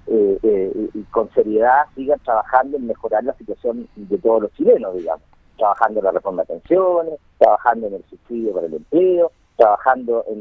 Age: 50-69